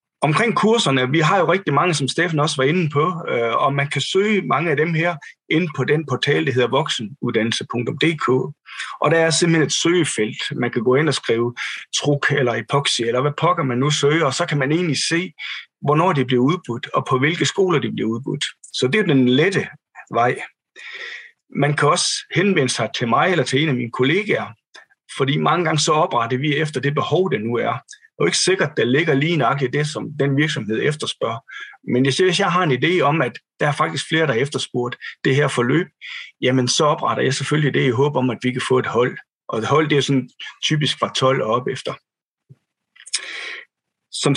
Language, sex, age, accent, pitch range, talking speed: Danish, male, 30-49, native, 130-170 Hz, 215 wpm